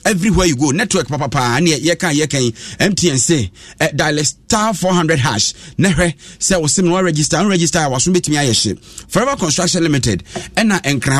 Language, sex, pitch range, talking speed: English, male, 125-170 Hz, 175 wpm